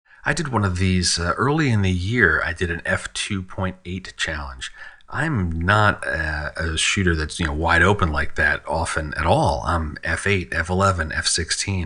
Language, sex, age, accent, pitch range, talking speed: English, male, 40-59, American, 80-95 Hz, 170 wpm